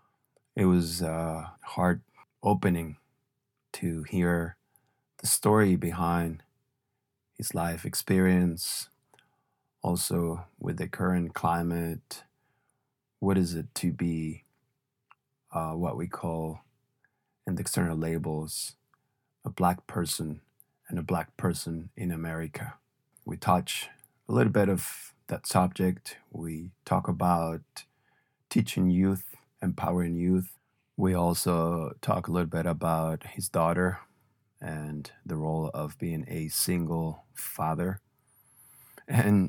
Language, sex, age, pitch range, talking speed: English, male, 20-39, 80-95 Hz, 110 wpm